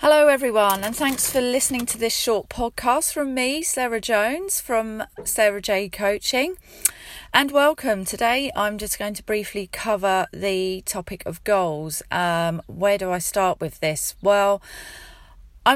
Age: 30-49